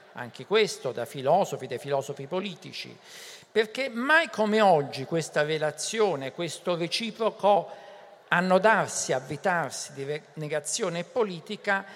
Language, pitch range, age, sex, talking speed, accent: Italian, 155-215 Hz, 50-69, male, 100 wpm, native